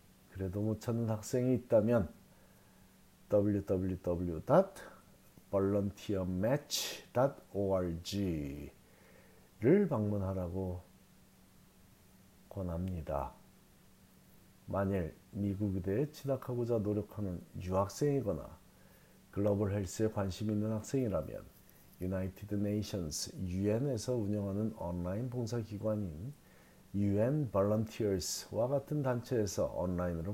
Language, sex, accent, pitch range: Korean, male, native, 95-115 Hz